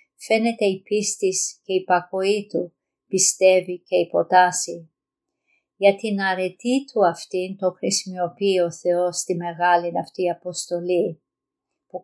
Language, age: Greek, 50-69